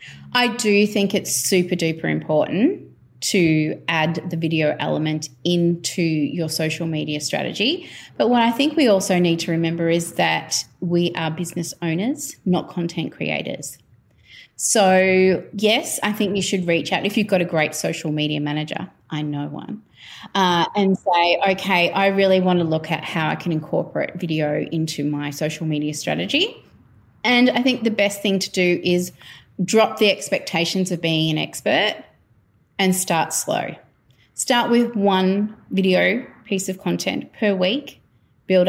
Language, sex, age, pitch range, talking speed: English, female, 30-49, 160-200 Hz, 160 wpm